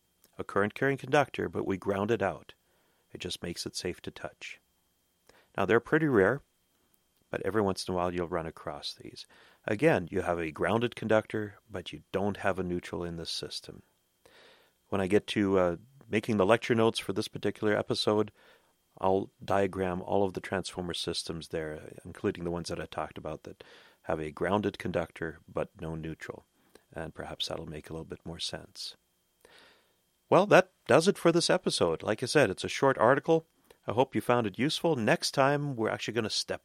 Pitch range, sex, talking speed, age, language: 90-130 Hz, male, 190 wpm, 40-59, English